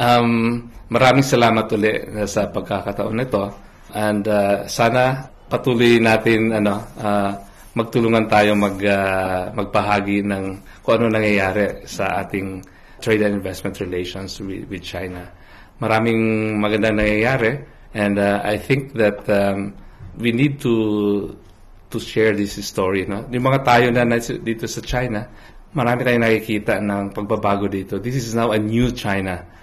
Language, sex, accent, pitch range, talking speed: Filipino, male, native, 100-115 Hz, 125 wpm